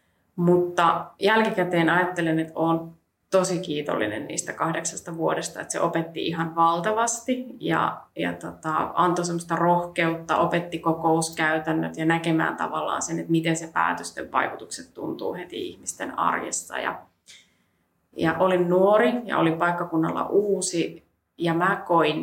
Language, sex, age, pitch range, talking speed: Finnish, female, 20-39, 165-190 Hz, 125 wpm